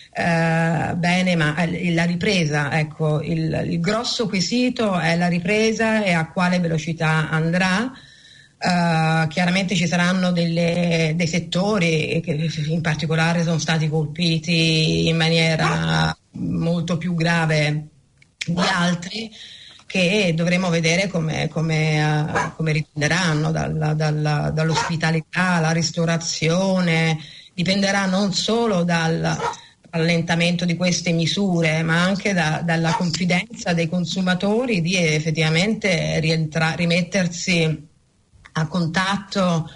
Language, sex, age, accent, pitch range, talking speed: Italian, female, 30-49, native, 160-180 Hz, 110 wpm